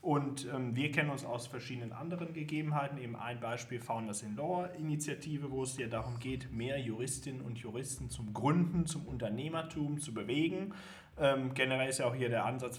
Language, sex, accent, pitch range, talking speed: German, male, German, 120-150 Hz, 180 wpm